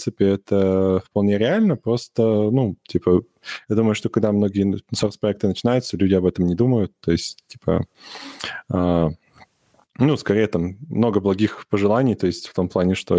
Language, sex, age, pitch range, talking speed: Russian, male, 20-39, 90-110 Hz, 165 wpm